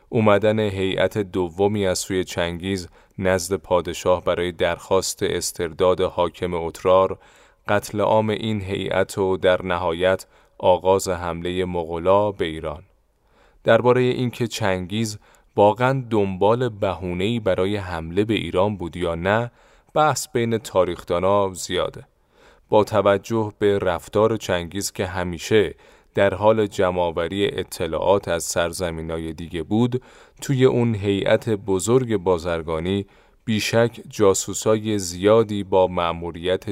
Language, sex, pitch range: Persian, male, 90-110 Hz